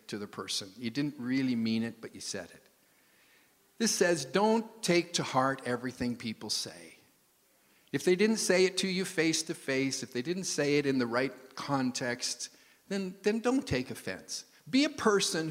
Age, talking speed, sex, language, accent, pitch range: 50-69, 185 wpm, male, English, American, 145-215 Hz